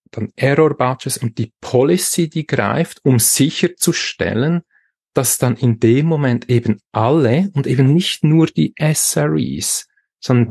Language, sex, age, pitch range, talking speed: German, male, 40-59, 110-140 Hz, 130 wpm